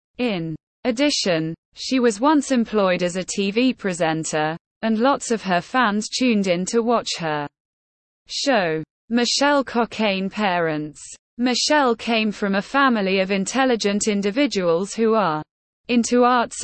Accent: British